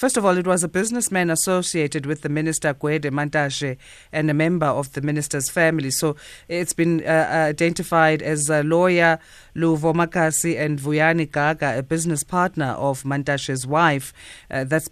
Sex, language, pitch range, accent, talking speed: female, English, 150-180 Hz, South African, 160 wpm